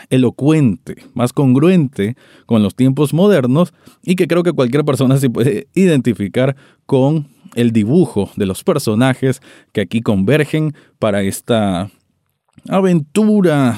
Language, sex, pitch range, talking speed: Spanish, male, 110-155 Hz, 120 wpm